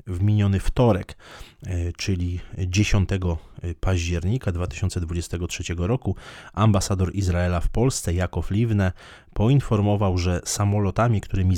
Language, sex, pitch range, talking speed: Polish, male, 85-105 Hz, 90 wpm